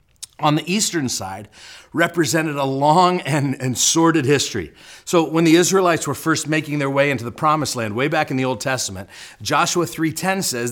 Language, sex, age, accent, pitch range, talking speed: English, male, 40-59, American, 125-160 Hz, 185 wpm